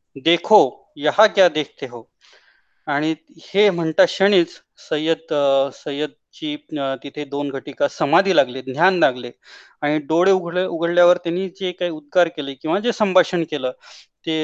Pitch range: 145-180 Hz